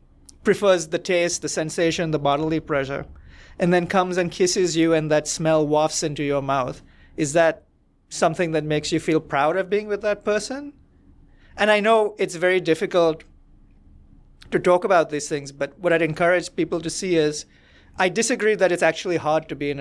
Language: English